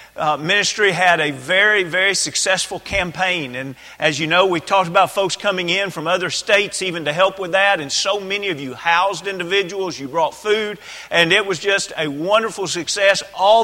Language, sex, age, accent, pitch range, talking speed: English, male, 40-59, American, 160-195 Hz, 195 wpm